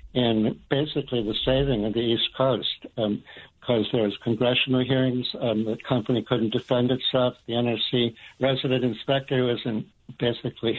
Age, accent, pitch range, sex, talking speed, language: 60-79, American, 115-130 Hz, male, 150 wpm, English